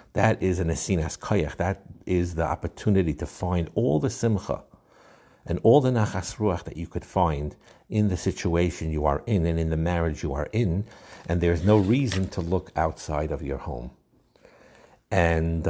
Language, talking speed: English, 185 wpm